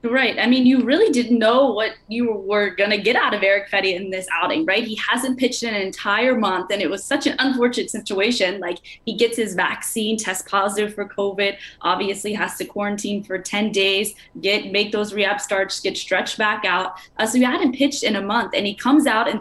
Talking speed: 225 wpm